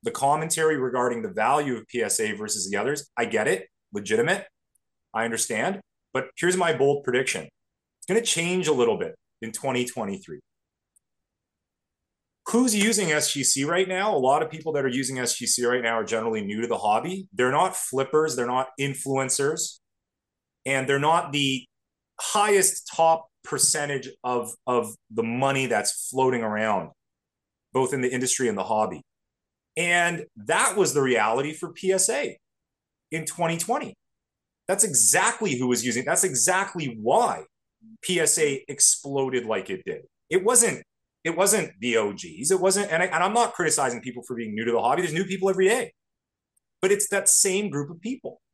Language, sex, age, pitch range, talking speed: English, male, 30-49, 125-185 Hz, 165 wpm